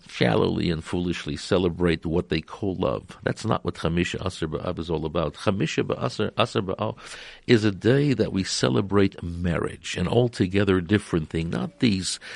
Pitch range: 85-110 Hz